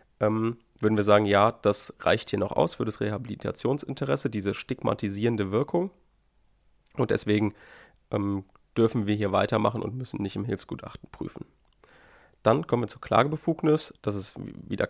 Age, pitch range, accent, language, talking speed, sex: 30-49, 100-125 Hz, German, German, 145 wpm, male